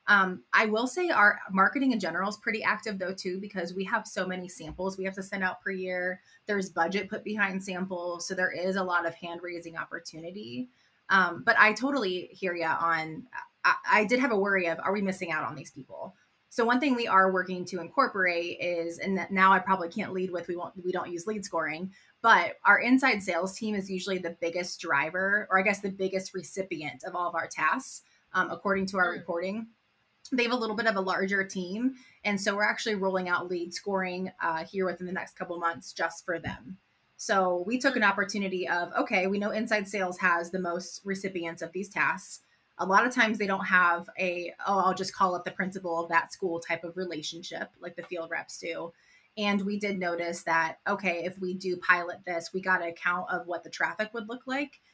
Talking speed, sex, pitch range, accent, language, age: 225 wpm, female, 175-200 Hz, American, English, 20-39